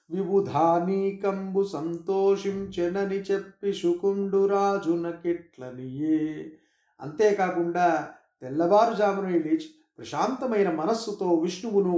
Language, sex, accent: Telugu, male, native